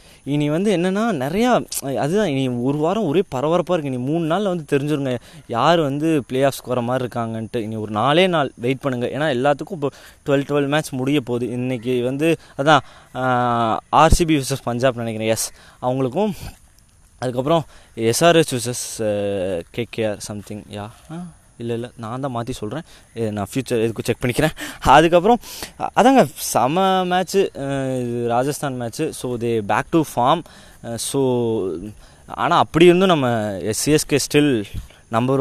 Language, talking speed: Tamil, 140 wpm